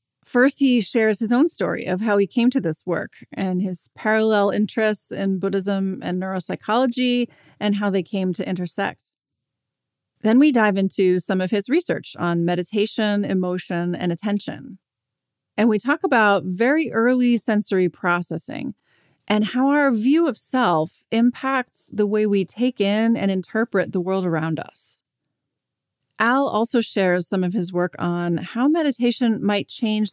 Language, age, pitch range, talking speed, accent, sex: English, 30-49, 180-225 Hz, 155 wpm, American, female